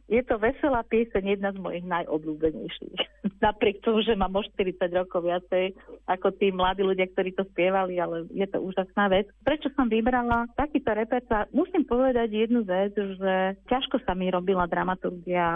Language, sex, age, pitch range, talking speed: Slovak, female, 40-59, 180-225 Hz, 160 wpm